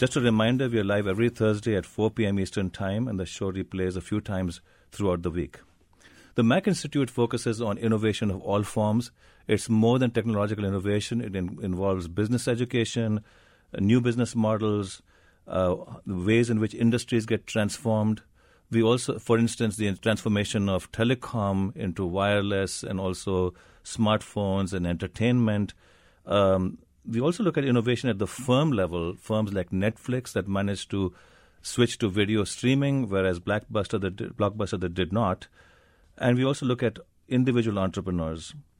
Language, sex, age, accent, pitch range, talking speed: English, male, 50-69, Indian, 95-115 Hz, 155 wpm